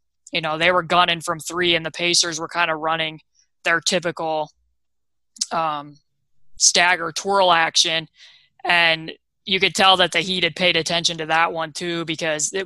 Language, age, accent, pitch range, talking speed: English, 20-39, American, 155-180 Hz, 165 wpm